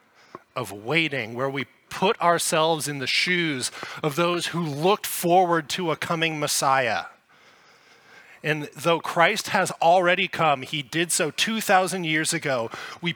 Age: 20-39